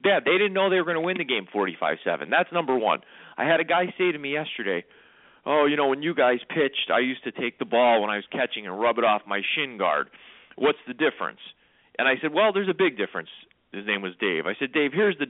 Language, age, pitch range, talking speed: English, 40-59, 120-190 Hz, 265 wpm